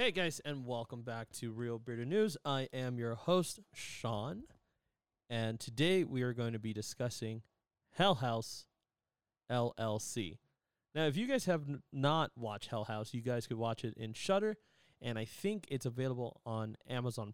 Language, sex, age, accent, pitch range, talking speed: English, male, 30-49, American, 115-145 Hz, 165 wpm